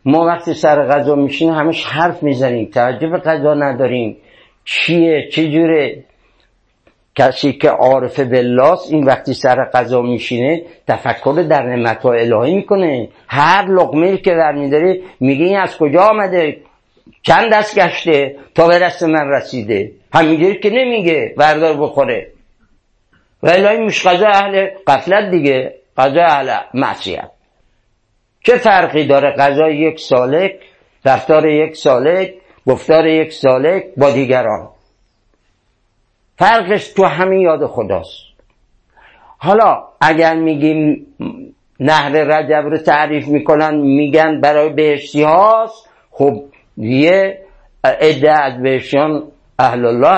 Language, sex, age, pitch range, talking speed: Persian, male, 60-79, 135-175 Hz, 115 wpm